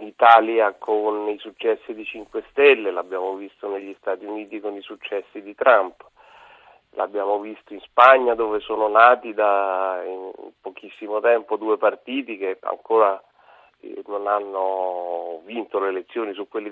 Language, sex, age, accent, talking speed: Italian, male, 40-59, native, 135 wpm